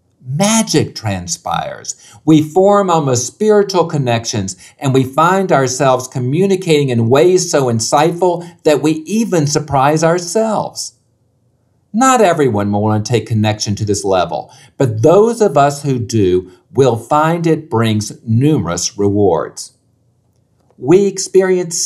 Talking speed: 125 wpm